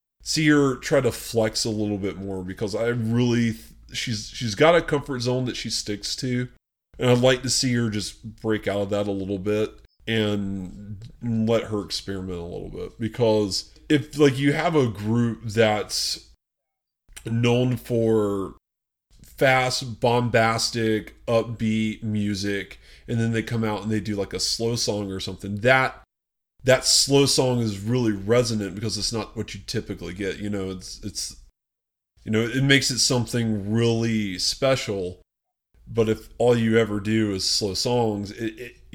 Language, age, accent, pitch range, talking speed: English, 30-49, American, 100-120 Hz, 165 wpm